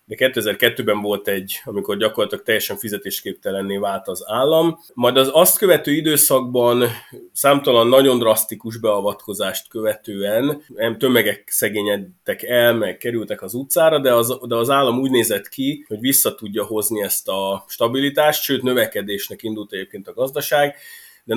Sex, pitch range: male, 100-125 Hz